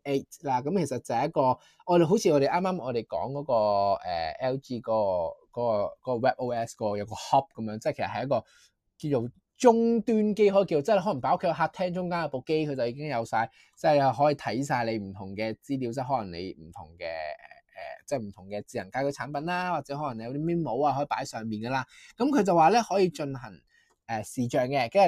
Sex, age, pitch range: male, 20-39, 115-175 Hz